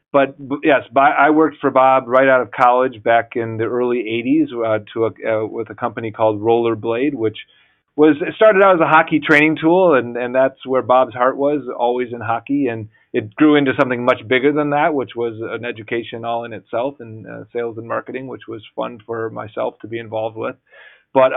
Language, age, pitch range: English, 40-59, 115-135 Hz